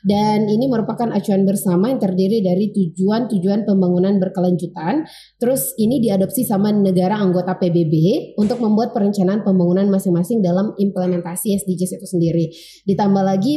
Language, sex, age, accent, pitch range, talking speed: Indonesian, female, 20-39, native, 180-210 Hz, 135 wpm